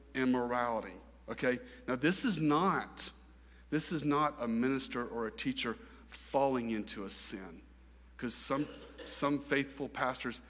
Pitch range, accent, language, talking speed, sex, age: 105-140 Hz, American, English, 130 wpm, male, 40-59